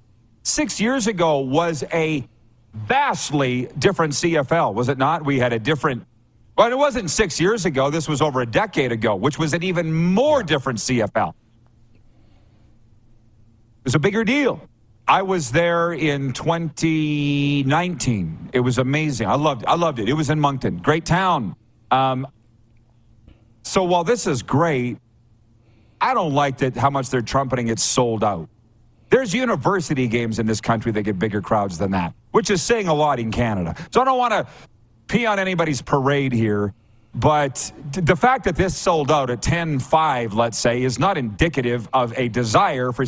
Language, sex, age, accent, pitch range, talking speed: English, male, 40-59, American, 115-165 Hz, 170 wpm